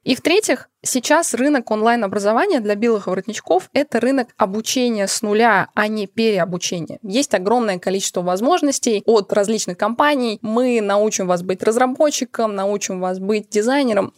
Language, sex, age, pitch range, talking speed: Russian, female, 20-39, 195-250 Hz, 135 wpm